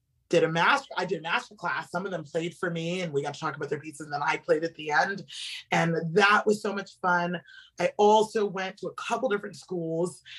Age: 30-49